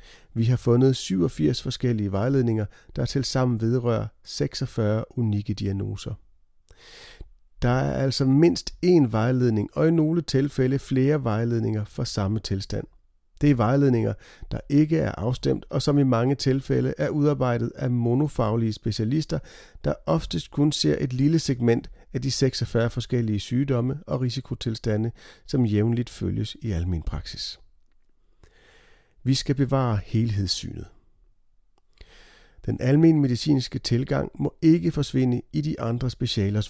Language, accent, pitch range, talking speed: Danish, native, 105-135 Hz, 130 wpm